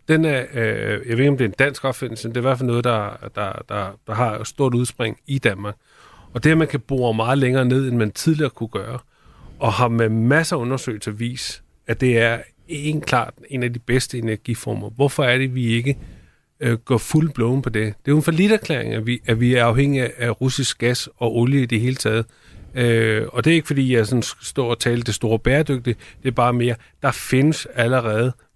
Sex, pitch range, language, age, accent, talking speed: male, 115-135 Hz, Danish, 30-49, native, 230 wpm